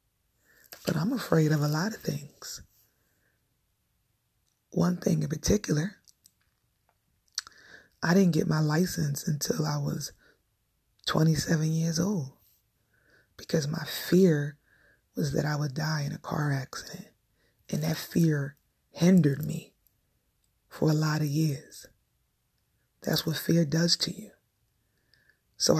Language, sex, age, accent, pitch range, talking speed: English, female, 30-49, American, 145-170 Hz, 120 wpm